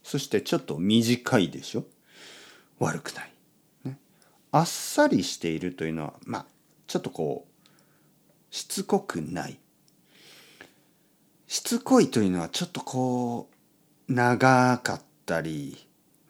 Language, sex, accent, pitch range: Japanese, male, native, 105-175 Hz